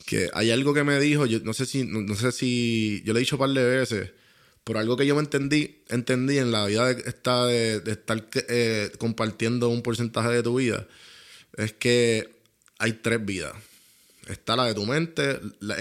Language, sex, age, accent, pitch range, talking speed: Spanish, male, 20-39, Venezuelan, 110-145 Hz, 210 wpm